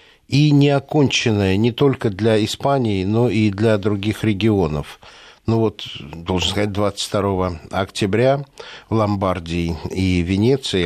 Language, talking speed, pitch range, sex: Russian, 120 wpm, 100-135 Hz, male